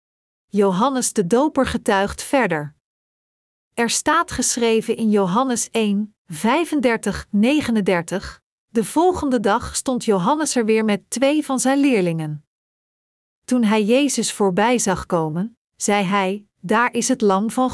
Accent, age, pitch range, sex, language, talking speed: Dutch, 50-69, 195-250 Hz, female, Dutch, 130 wpm